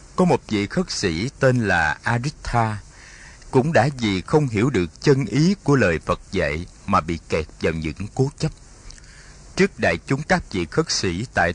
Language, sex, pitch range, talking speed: Vietnamese, male, 100-130 Hz, 180 wpm